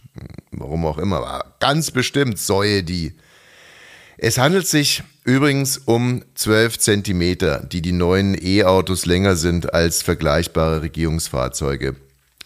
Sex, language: male, German